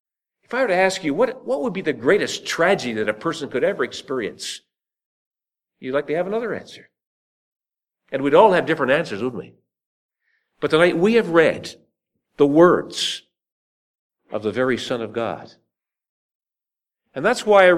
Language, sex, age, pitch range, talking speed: English, male, 50-69, 150-200 Hz, 170 wpm